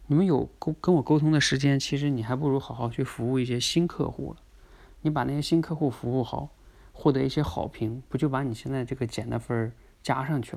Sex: male